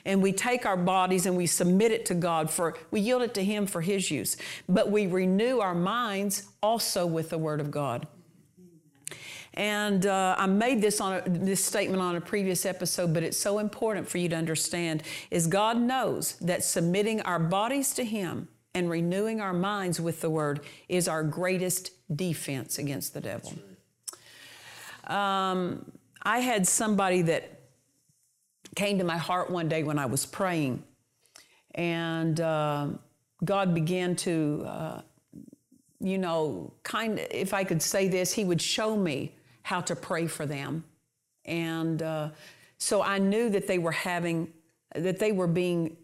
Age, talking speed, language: 50-69, 165 wpm, English